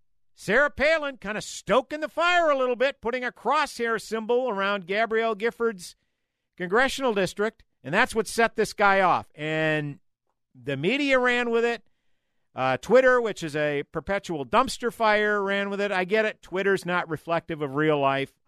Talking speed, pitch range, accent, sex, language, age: 170 wpm, 130-210 Hz, American, male, English, 50-69